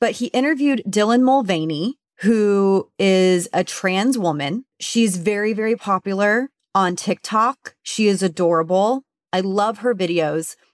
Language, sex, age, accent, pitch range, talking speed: English, female, 30-49, American, 175-220 Hz, 130 wpm